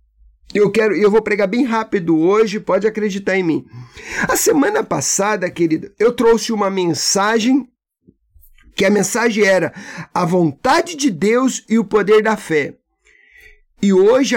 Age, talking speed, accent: 50-69, 140 wpm, Brazilian